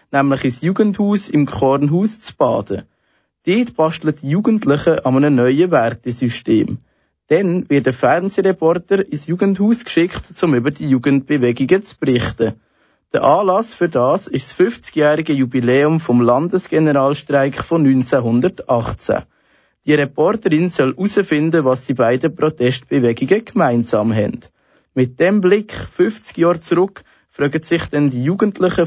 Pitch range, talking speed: 135-180 Hz, 125 wpm